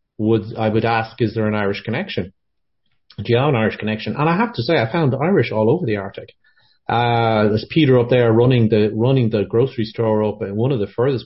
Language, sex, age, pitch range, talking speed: English, male, 40-59, 105-125 Hz, 235 wpm